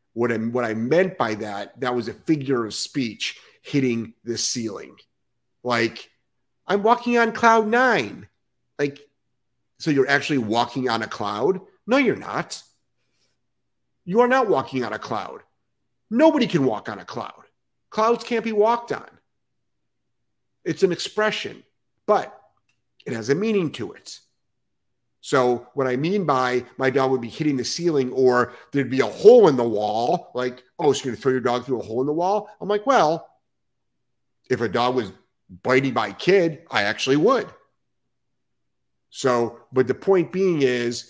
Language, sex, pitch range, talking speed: English, male, 120-180 Hz, 165 wpm